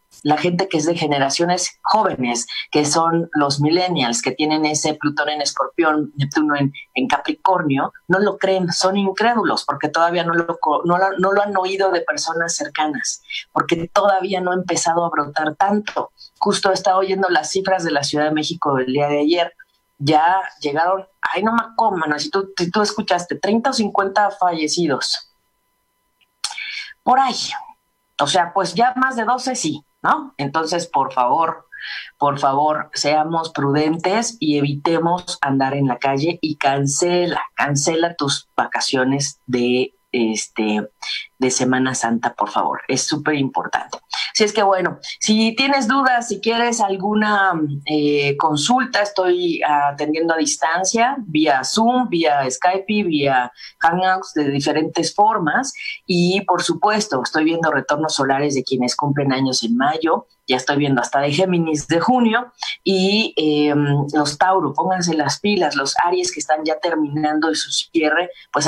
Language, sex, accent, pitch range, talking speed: Spanish, female, Mexican, 145-190 Hz, 155 wpm